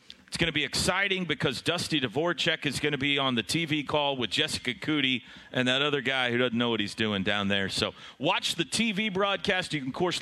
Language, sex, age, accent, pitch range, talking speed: English, male, 40-59, American, 120-160 Hz, 235 wpm